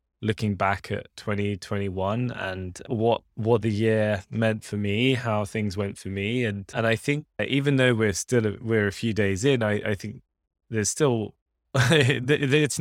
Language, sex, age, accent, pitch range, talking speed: English, male, 10-29, British, 95-115 Hz, 170 wpm